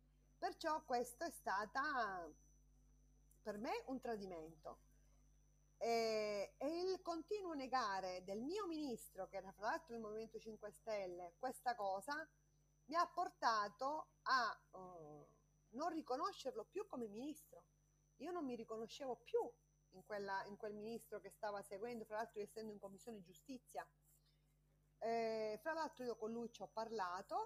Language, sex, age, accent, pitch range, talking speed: Italian, female, 30-49, native, 195-260 Hz, 140 wpm